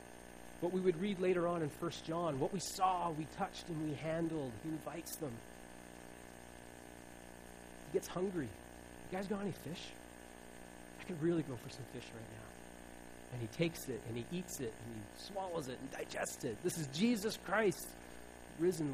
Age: 30-49